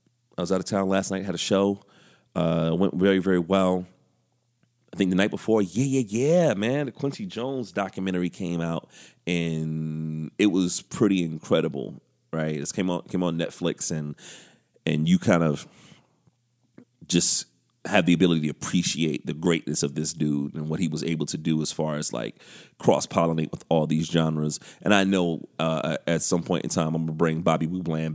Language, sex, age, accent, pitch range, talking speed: English, male, 30-49, American, 80-95 Hz, 190 wpm